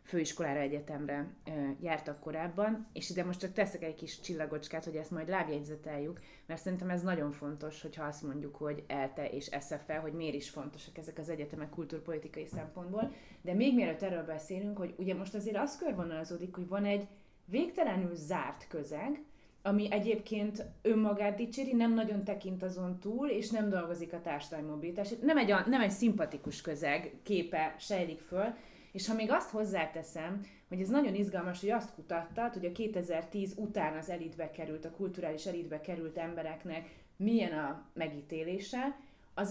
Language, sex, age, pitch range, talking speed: Hungarian, female, 30-49, 155-205 Hz, 165 wpm